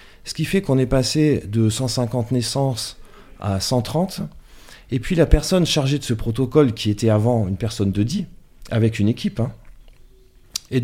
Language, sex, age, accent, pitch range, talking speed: French, male, 30-49, French, 110-135 Hz, 170 wpm